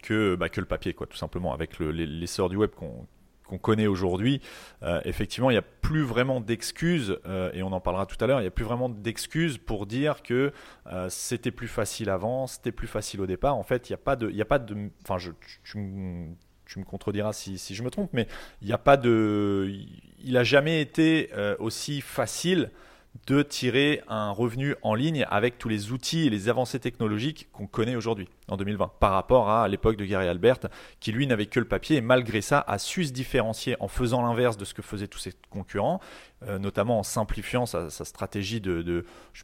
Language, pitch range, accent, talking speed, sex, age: French, 100-130 Hz, French, 225 wpm, male, 30-49